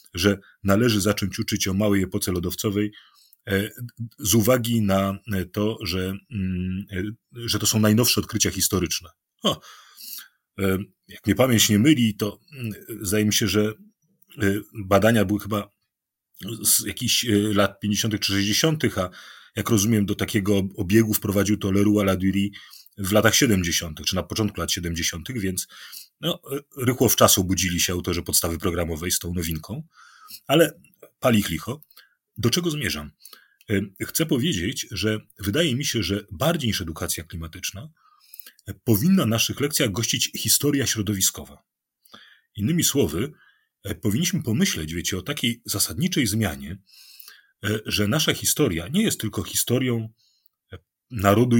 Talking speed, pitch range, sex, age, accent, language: 130 wpm, 95-115 Hz, male, 30-49, native, Polish